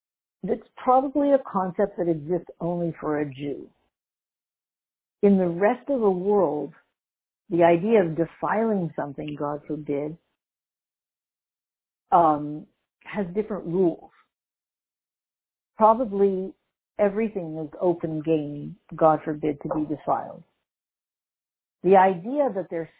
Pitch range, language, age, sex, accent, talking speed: 165-215 Hz, English, 50-69, female, American, 105 wpm